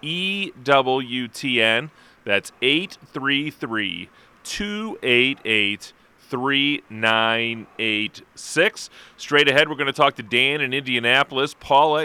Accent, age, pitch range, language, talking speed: American, 30-49, 110-145 Hz, English, 80 wpm